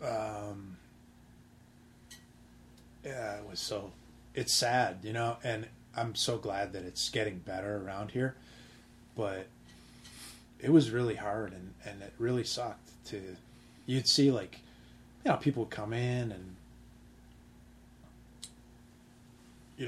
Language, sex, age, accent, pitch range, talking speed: English, male, 30-49, American, 95-115 Hz, 120 wpm